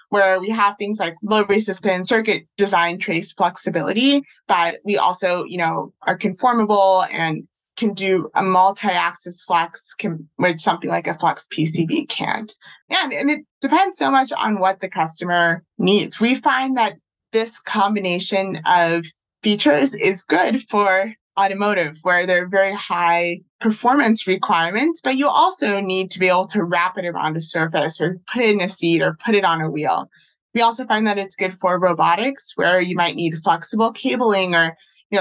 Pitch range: 175-220 Hz